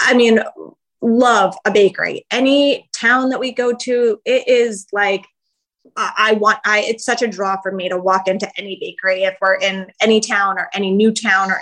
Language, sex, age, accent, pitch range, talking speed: English, female, 20-39, American, 200-255 Hz, 195 wpm